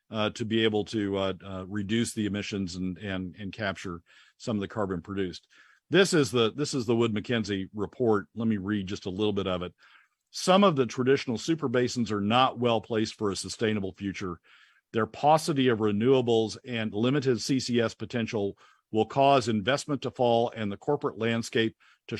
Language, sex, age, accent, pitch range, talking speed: English, male, 50-69, American, 100-125 Hz, 185 wpm